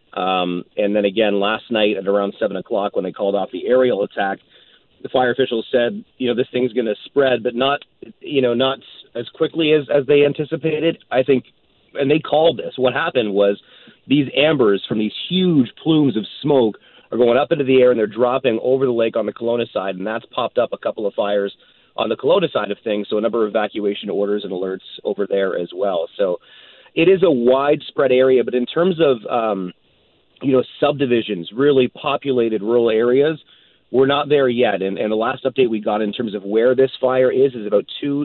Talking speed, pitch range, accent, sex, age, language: 215 wpm, 110-140 Hz, American, male, 40-59, English